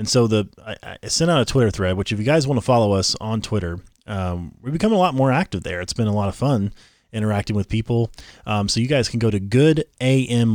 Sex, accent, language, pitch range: male, American, English, 105-140 Hz